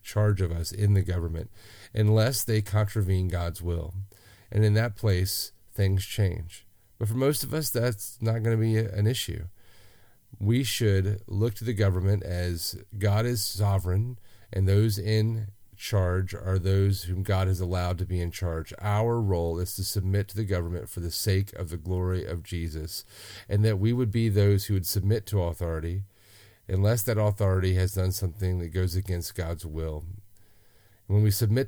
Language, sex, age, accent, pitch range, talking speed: English, male, 40-59, American, 90-105 Hz, 180 wpm